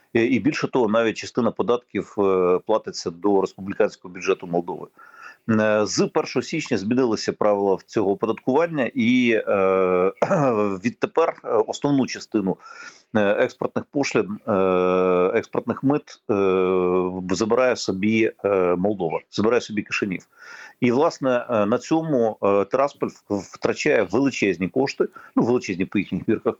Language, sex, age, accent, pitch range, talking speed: Ukrainian, male, 50-69, native, 95-140 Hz, 100 wpm